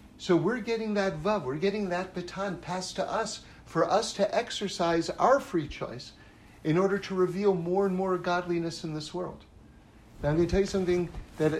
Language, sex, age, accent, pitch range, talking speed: English, male, 50-69, American, 140-200 Hz, 195 wpm